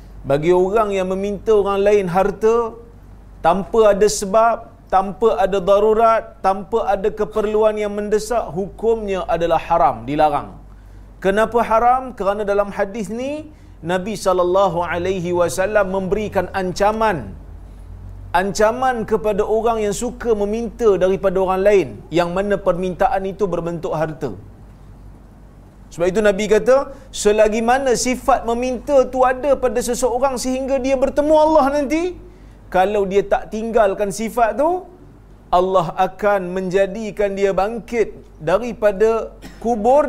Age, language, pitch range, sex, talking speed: 40-59, Malayalam, 185-230 Hz, male, 120 wpm